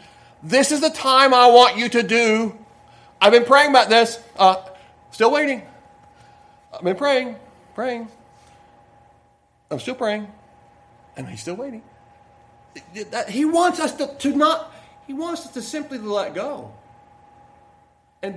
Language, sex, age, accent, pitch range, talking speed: English, male, 40-59, American, 165-255 Hz, 135 wpm